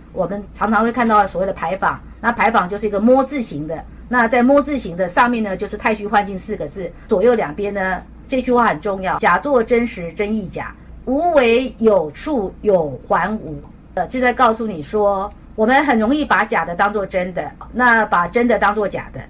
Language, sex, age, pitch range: Chinese, female, 50-69, 195-250 Hz